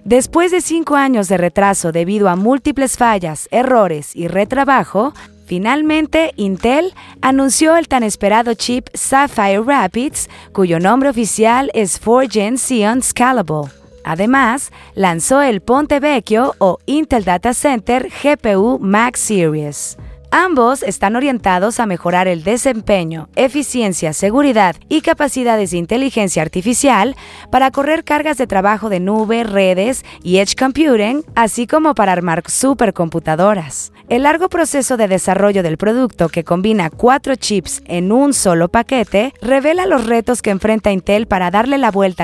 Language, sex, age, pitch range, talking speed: Spanish, female, 30-49, 195-265 Hz, 135 wpm